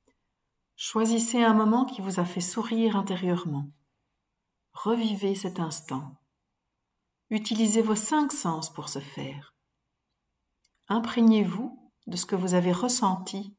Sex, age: female, 50-69